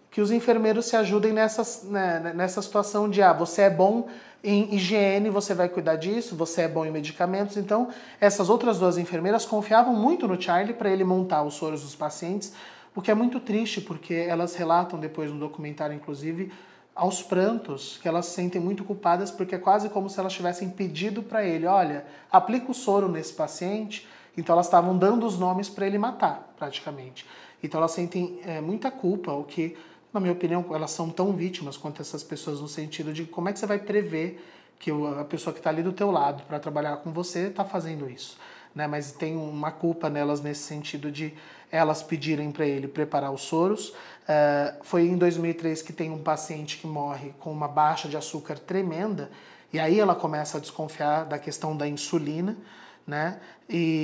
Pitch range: 155-195 Hz